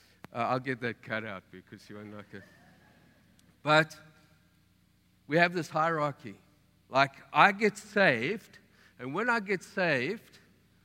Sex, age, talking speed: male, 50-69, 140 wpm